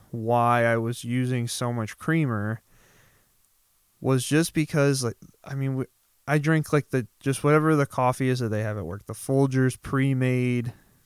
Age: 20-39